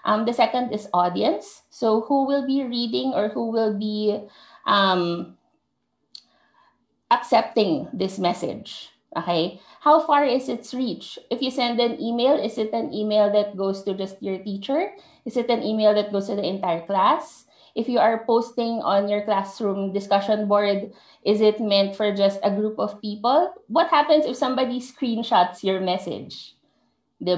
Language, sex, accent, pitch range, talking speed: Filipino, female, native, 195-245 Hz, 165 wpm